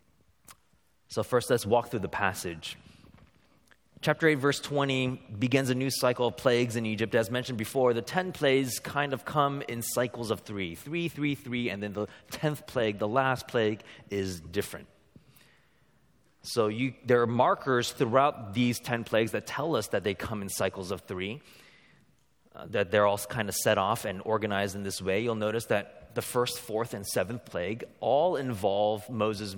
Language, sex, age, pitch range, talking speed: English, male, 30-49, 105-140 Hz, 180 wpm